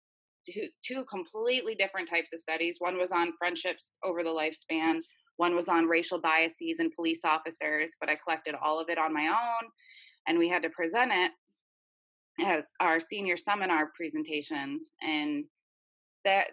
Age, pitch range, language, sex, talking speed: 20-39, 155-200 Hz, English, female, 155 wpm